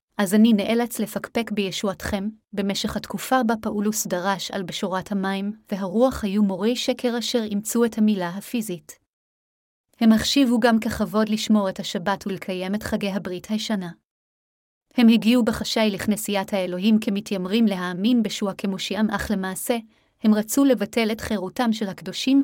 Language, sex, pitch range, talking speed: Hebrew, female, 195-225 Hz, 140 wpm